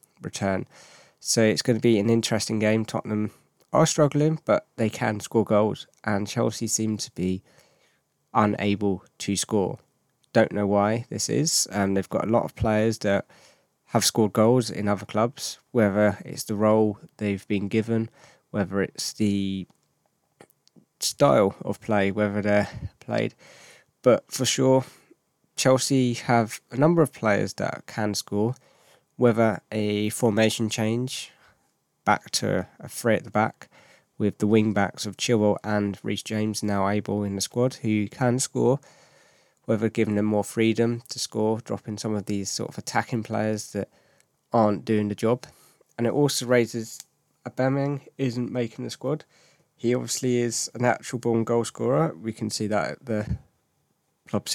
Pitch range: 105-120 Hz